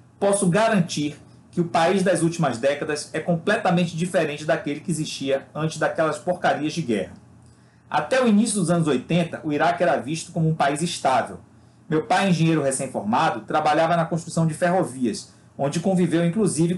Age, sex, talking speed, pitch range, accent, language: 40-59, male, 160 wpm, 145-180 Hz, Brazilian, Portuguese